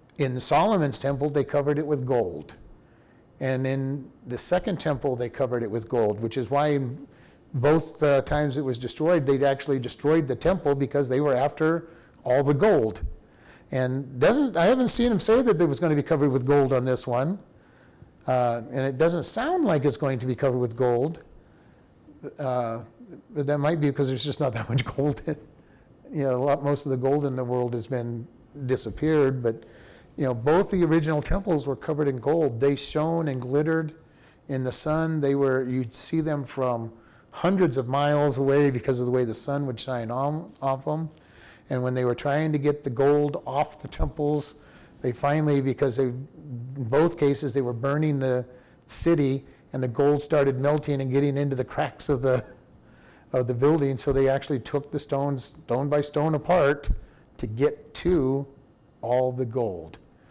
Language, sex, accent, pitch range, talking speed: English, male, American, 130-150 Hz, 190 wpm